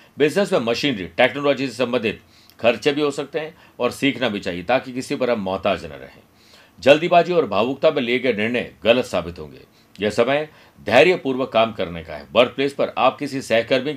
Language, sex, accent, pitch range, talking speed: Hindi, male, native, 115-145 Hz, 195 wpm